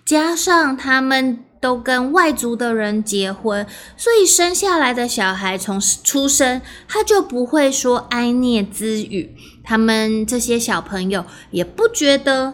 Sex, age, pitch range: female, 20-39, 215-300 Hz